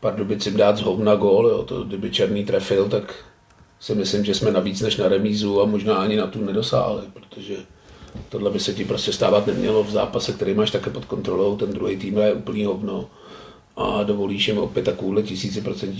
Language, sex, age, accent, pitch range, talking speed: Czech, male, 40-59, native, 105-120 Hz, 205 wpm